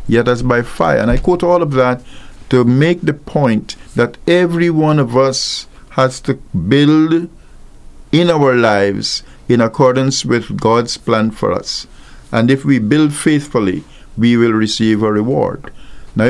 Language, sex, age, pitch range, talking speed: English, male, 50-69, 105-135 Hz, 160 wpm